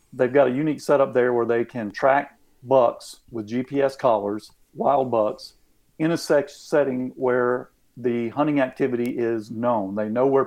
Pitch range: 120-140 Hz